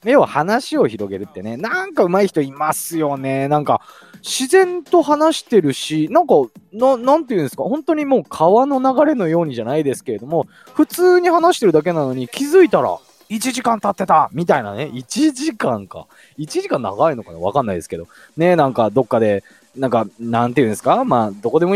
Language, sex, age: Japanese, male, 20-39